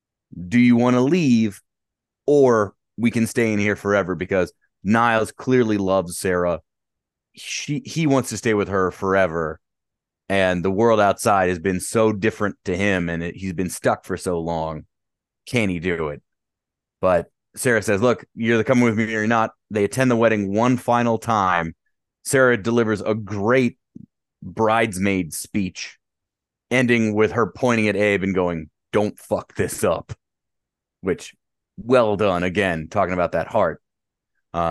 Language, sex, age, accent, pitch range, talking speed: English, male, 30-49, American, 95-120 Hz, 160 wpm